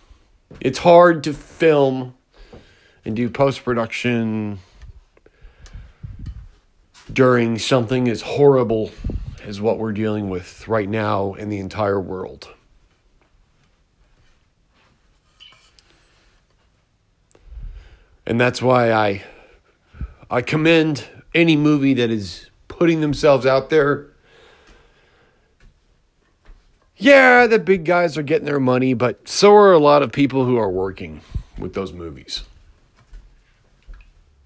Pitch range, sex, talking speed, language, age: 110-160 Hz, male, 100 wpm, English, 40-59